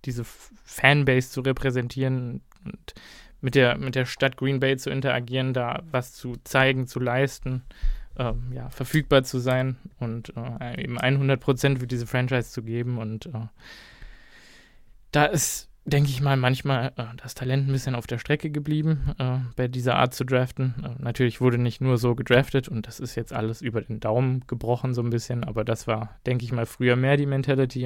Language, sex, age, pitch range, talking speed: German, male, 20-39, 120-135 Hz, 185 wpm